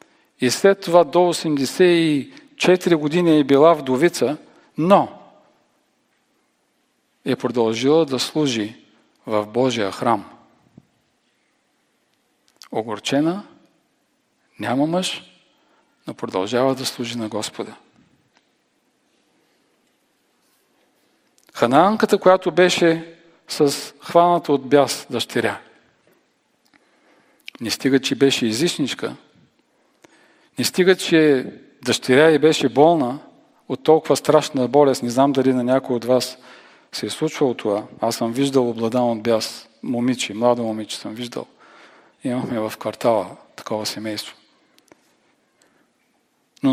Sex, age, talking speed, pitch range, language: male, 50-69, 100 wpm, 125-175 Hz, Bulgarian